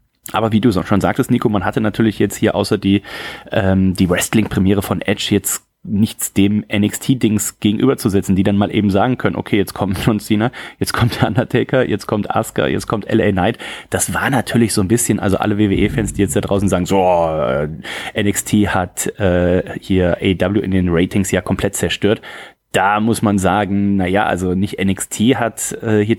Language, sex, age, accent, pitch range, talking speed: German, male, 30-49, German, 95-110 Hz, 185 wpm